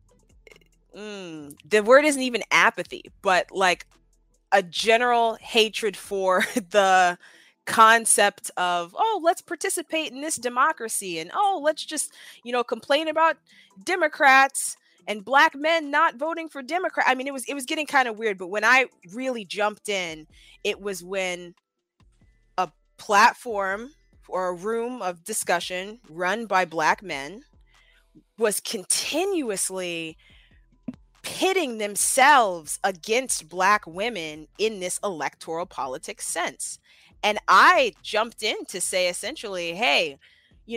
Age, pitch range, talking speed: 20-39, 190-275 Hz, 130 wpm